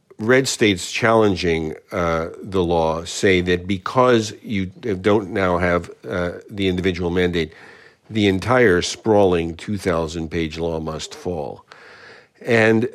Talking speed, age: 115 wpm, 50-69